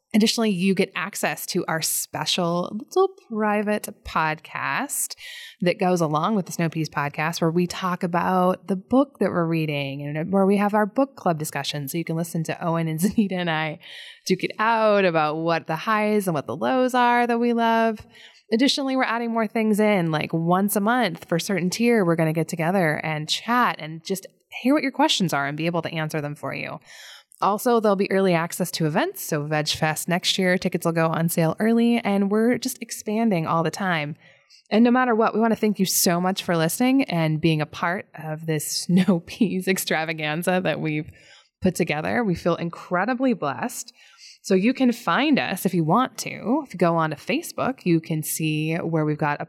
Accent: American